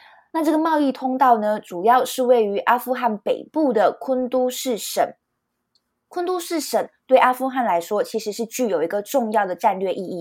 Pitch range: 215-265 Hz